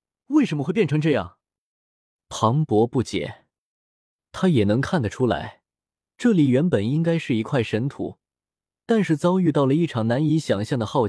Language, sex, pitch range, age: Chinese, male, 110-160 Hz, 20-39